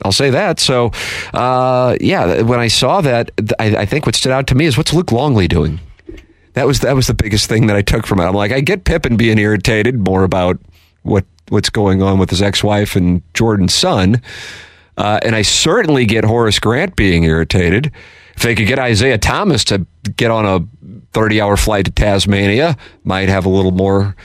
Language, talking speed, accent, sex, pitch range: English, 205 wpm, American, male, 90-120 Hz